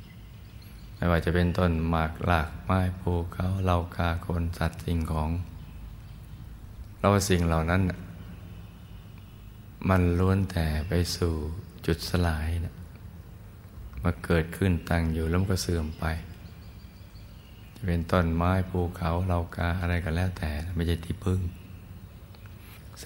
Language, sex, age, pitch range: Thai, male, 20-39, 85-100 Hz